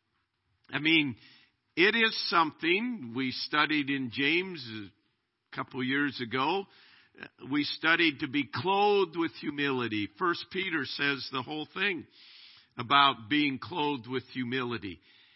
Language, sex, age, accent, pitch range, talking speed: English, male, 50-69, American, 120-155 Hz, 125 wpm